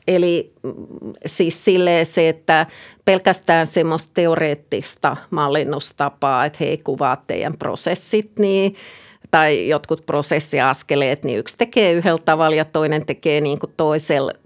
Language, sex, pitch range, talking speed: Finnish, female, 155-210 Hz, 115 wpm